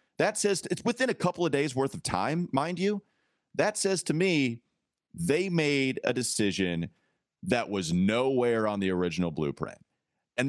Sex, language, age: male, English, 30-49